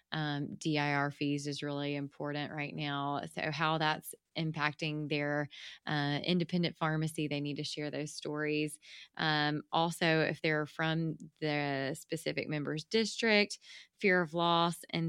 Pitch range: 150-175 Hz